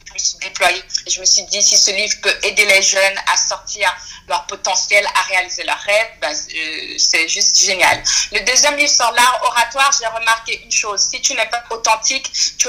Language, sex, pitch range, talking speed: French, female, 195-225 Hz, 200 wpm